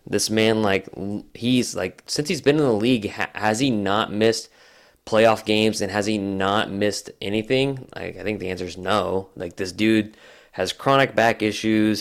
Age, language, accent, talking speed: 20-39, English, American, 190 wpm